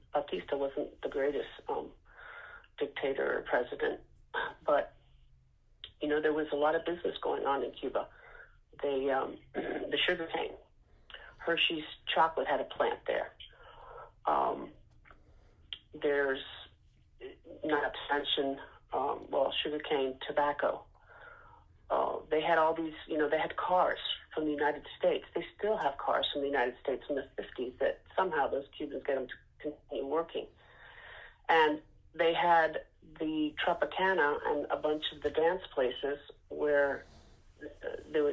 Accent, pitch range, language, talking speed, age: American, 145-215 Hz, English, 140 wpm, 40-59